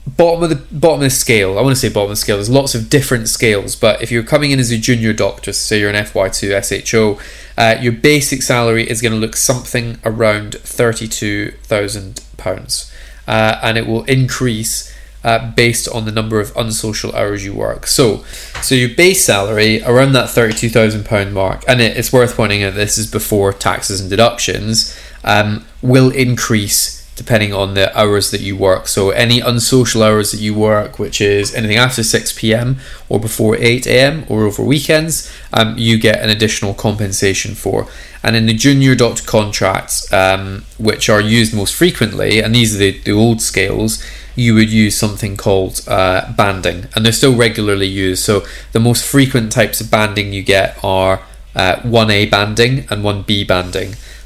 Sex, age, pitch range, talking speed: male, 20-39, 105-120 Hz, 185 wpm